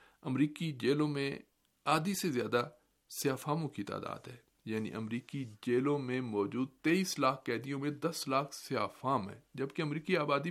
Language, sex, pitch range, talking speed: Urdu, male, 115-155 Hz, 150 wpm